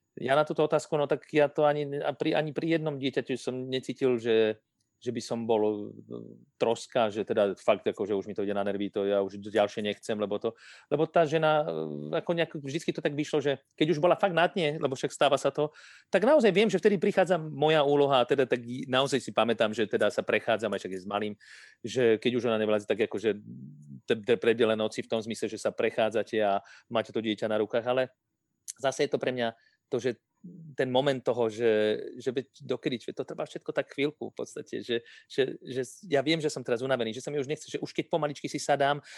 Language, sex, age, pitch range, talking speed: Slovak, male, 40-59, 110-150 Hz, 220 wpm